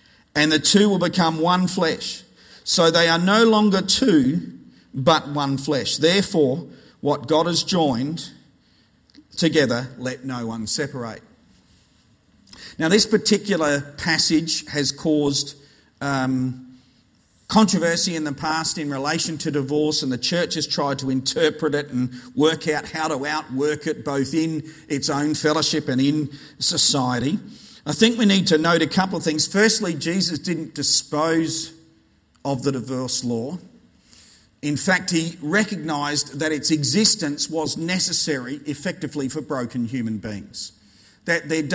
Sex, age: male, 50-69